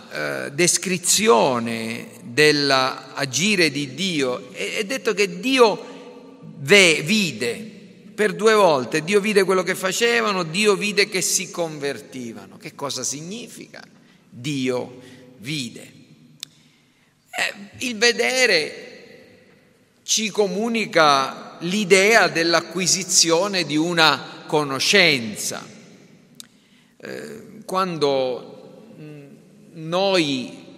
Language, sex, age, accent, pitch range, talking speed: Italian, male, 50-69, native, 145-215 Hz, 80 wpm